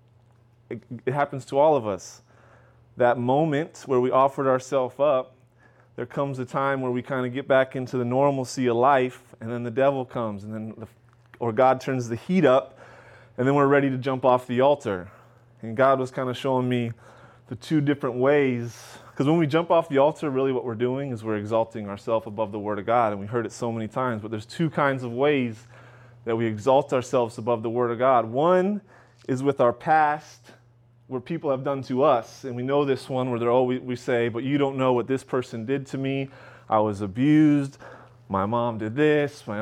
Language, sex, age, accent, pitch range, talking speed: English, male, 30-49, American, 120-140 Hz, 220 wpm